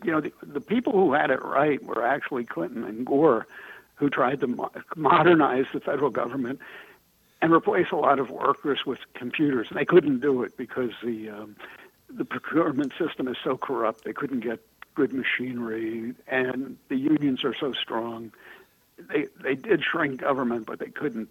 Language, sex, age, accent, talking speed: English, male, 60-79, American, 175 wpm